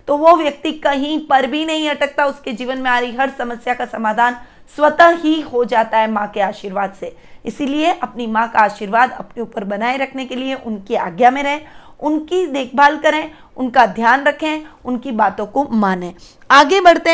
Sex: female